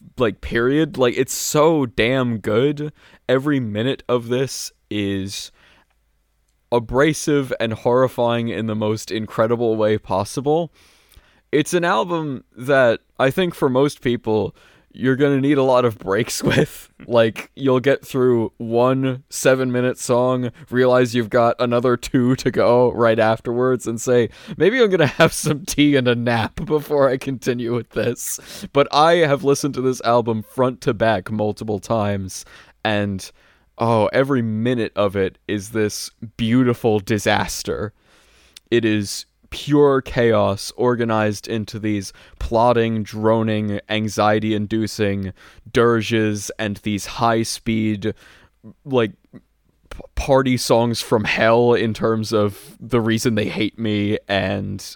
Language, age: English, 20-39